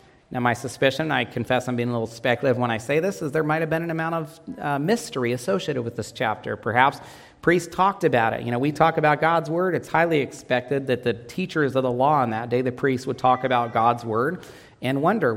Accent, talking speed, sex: American, 240 wpm, male